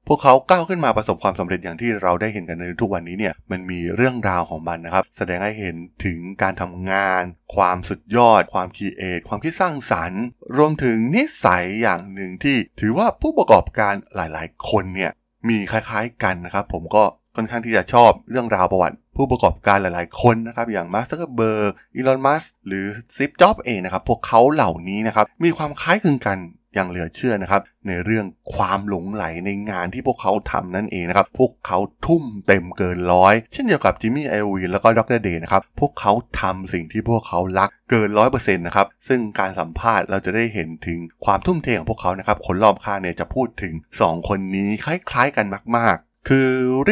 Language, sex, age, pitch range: Thai, male, 20-39, 90-115 Hz